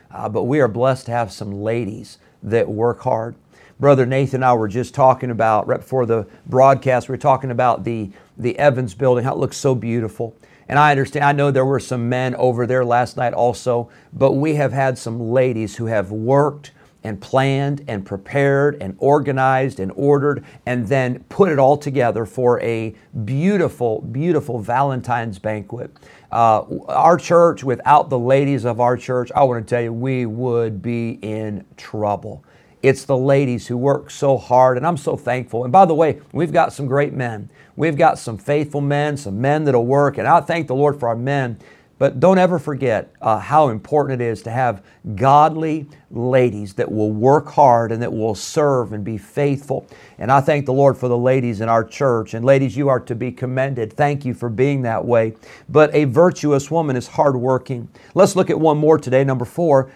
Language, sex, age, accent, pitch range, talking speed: English, male, 50-69, American, 120-145 Hz, 195 wpm